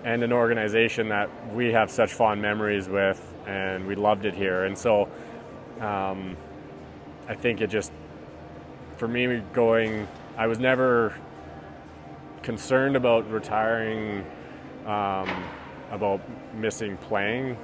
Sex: male